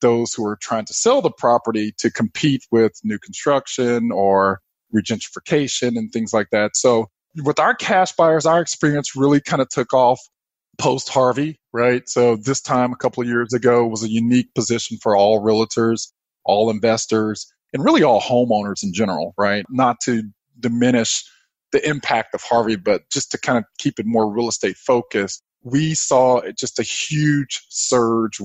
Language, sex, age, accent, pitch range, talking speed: English, male, 20-39, American, 110-130 Hz, 170 wpm